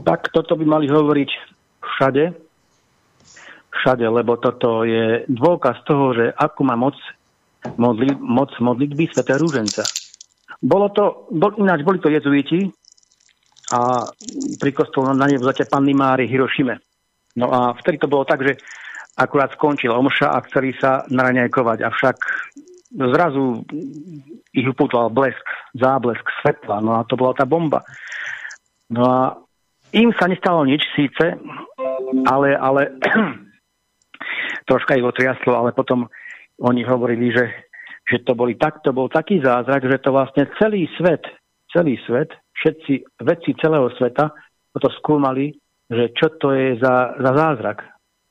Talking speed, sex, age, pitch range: 135 wpm, male, 50-69, 125-155 Hz